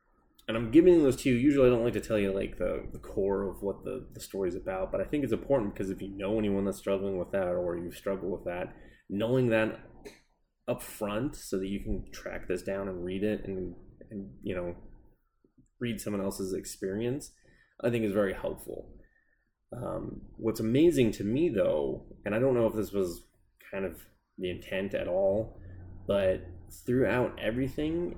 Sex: male